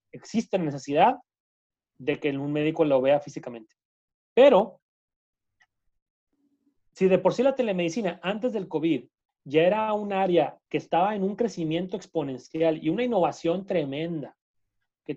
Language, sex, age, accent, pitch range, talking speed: Spanish, male, 30-49, Mexican, 150-185 Hz, 135 wpm